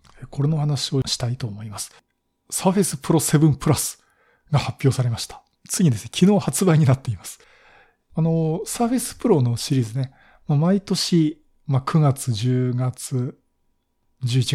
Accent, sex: native, male